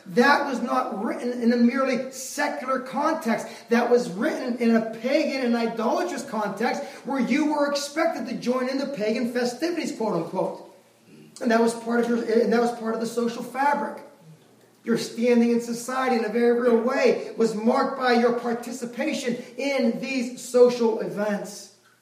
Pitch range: 220-265 Hz